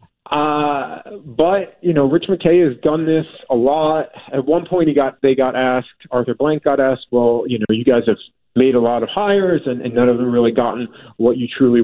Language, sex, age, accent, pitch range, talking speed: English, male, 30-49, American, 120-155 Hz, 225 wpm